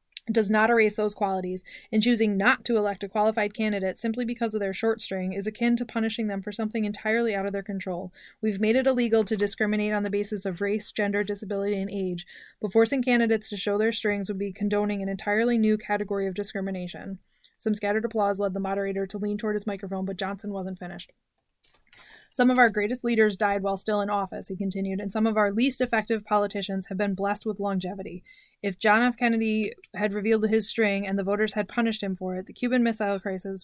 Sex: female